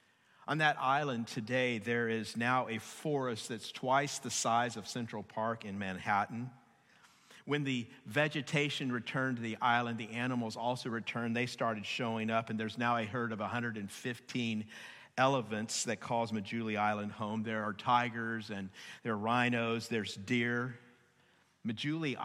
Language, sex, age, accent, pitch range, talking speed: English, male, 50-69, American, 110-130 Hz, 150 wpm